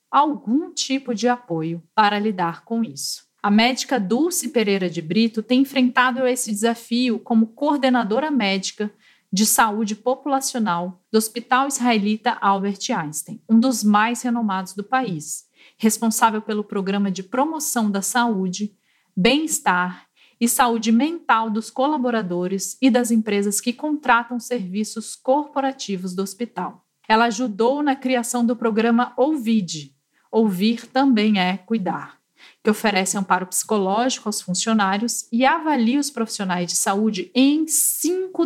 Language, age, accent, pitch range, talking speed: Portuguese, 40-59, Brazilian, 200-250 Hz, 130 wpm